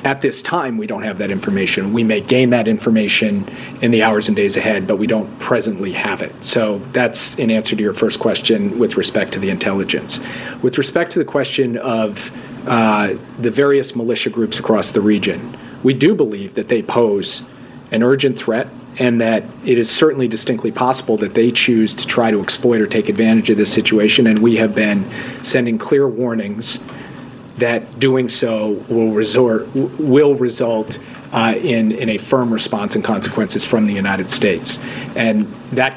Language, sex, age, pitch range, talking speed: English, male, 40-59, 110-130 Hz, 180 wpm